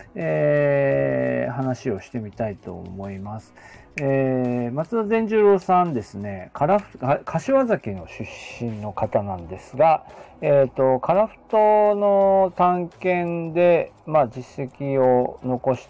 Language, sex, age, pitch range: Japanese, male, 40-59, 115-170 Hz